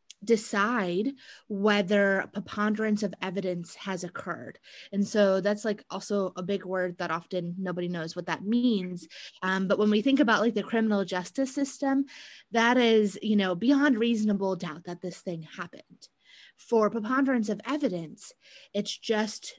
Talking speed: 155 wpm